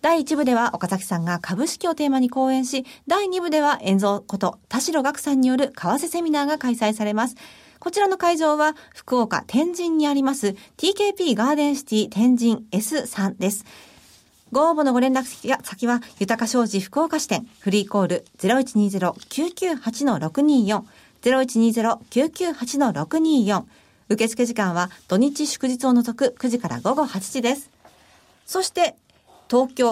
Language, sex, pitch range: Japanese, female, 215-305 Hz